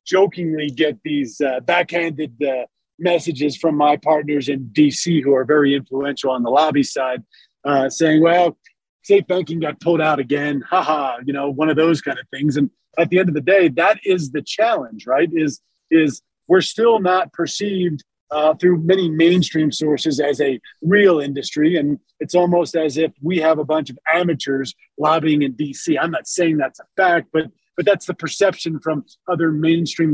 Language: English